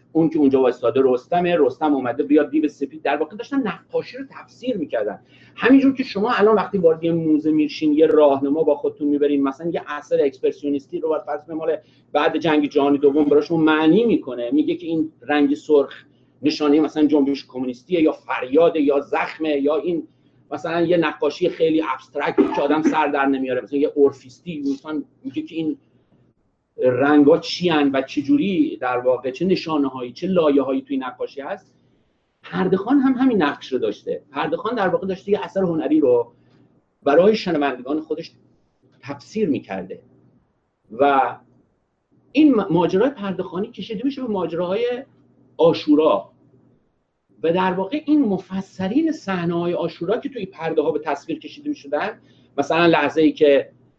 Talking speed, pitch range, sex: 160 wpm, 145-200 Hz, male